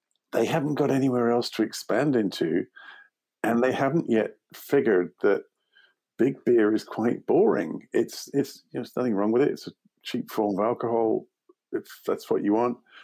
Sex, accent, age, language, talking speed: male, British, 50-69, English, 180 wpm